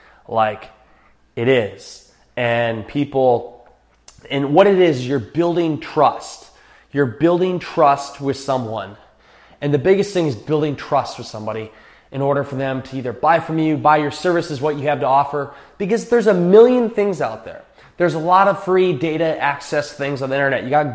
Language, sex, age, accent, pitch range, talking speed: English, male, 20-39, American, 140-180 Hz, 180 wpm